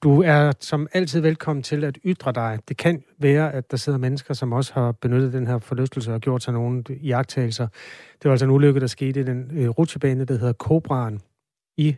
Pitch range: 125-160 Hz